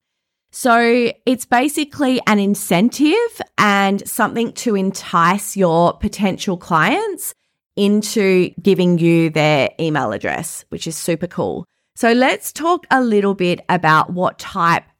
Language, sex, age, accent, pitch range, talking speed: English, female, 20-39, Australian, 180-245 Hz, 125 wpm